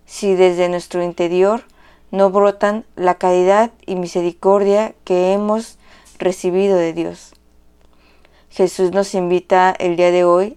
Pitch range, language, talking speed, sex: 170-195 Hz, Spanish, 125 wpm, female